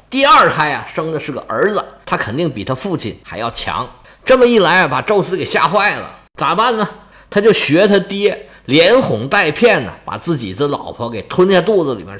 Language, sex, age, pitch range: Chinese, male, 20-39, 145-220 Hz